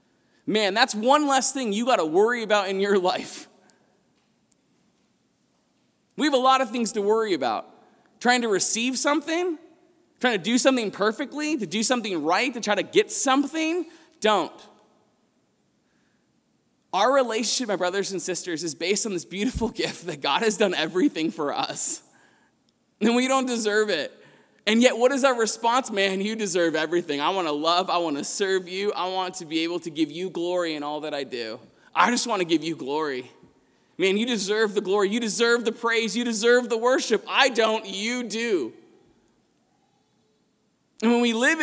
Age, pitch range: 20-39, 200-265 Hz